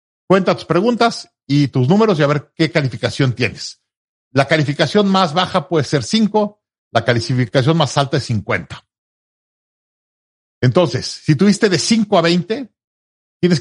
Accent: Mexican